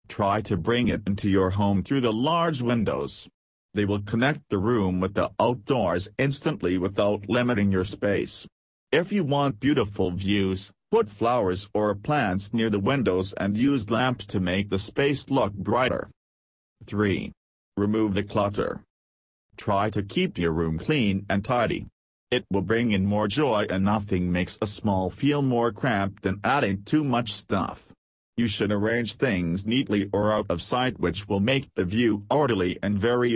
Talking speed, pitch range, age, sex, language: 165 wpm, 95-115 Hz, 40-59, male, English